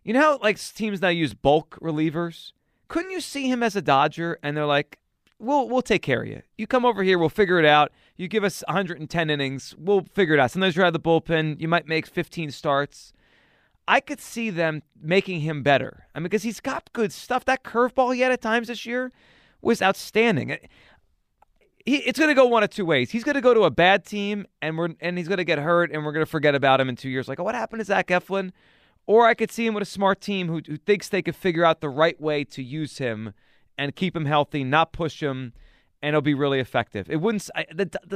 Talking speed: 240 wpm